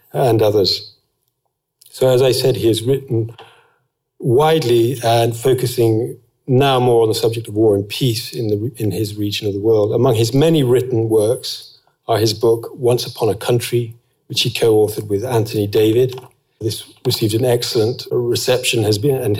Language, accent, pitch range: English, British, 105-120 Hz